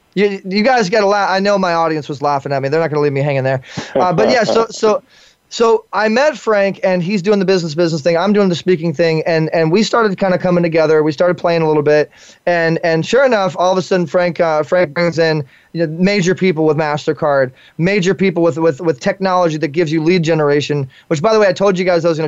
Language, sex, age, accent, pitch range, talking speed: English, male, 20-39, American, 160-195 Hz, 265 wpm